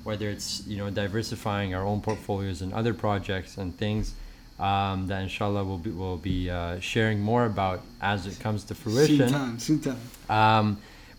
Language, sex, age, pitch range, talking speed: English, male, 20-39, 100-120 Hz, 175 wpm